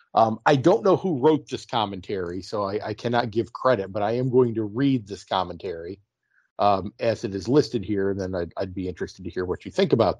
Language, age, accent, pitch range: English, 50-69, American, 115-155 Hz